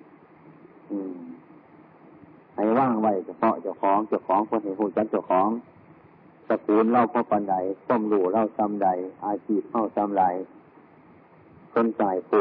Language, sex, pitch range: Thai, male, 100-120 Hz